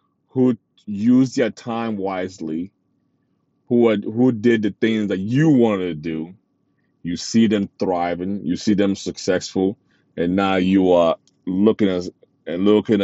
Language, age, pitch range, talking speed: English, 30-49, 95-130 Hz, 145 wpm